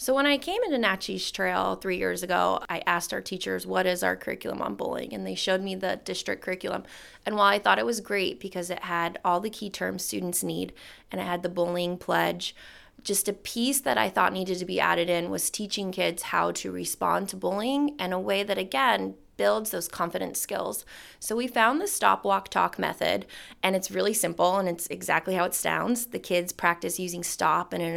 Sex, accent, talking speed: female, American, 220 wpm